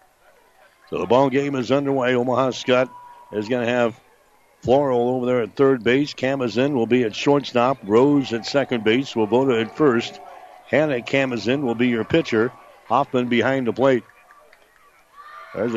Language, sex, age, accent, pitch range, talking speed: English, male, 60-79, American, 115-130 Hz, 160 wpm